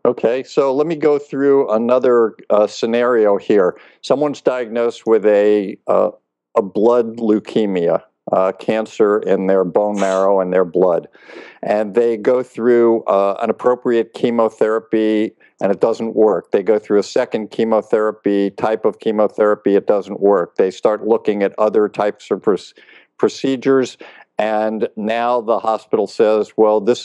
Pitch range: 105-125 Hz